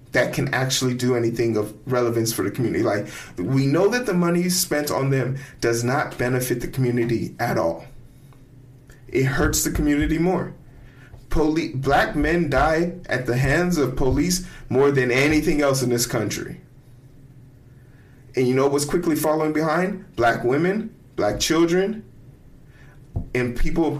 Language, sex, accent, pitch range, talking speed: English, male, American, 125-150 Hz, 155 wpm